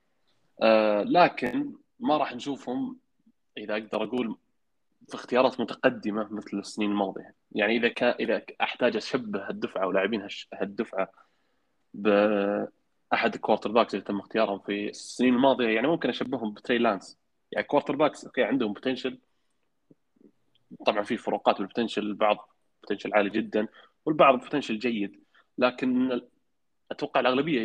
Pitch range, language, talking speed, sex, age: 105-125 Hz, Arabic, 120 wpm, male, 20-39